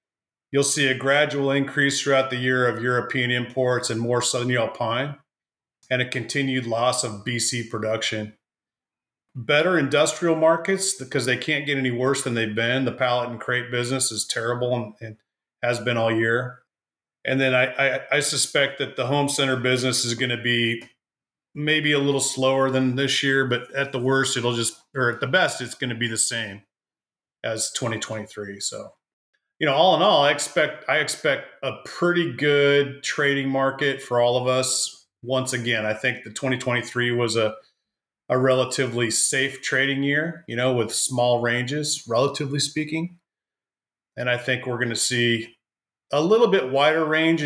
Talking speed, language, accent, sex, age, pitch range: 175 wpm, English, American, male, 40-59, 120-140 Hz